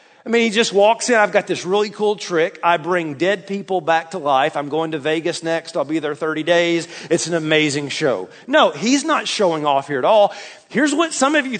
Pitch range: 180-235 Hz